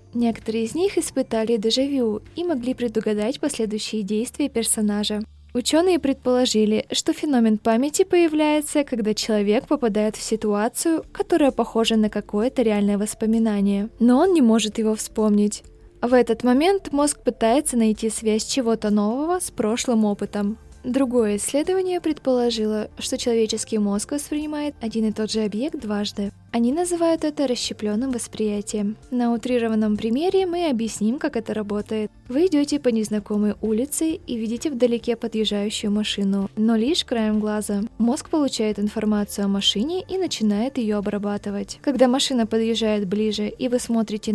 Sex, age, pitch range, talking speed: female, 20-39, 215-270 Hz, 140 wpm